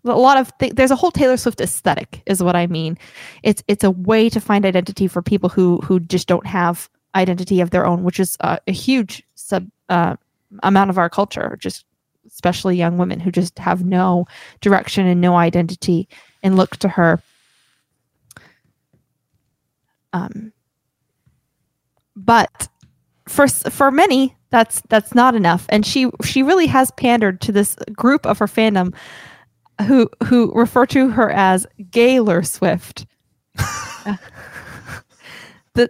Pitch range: 180-240 Hz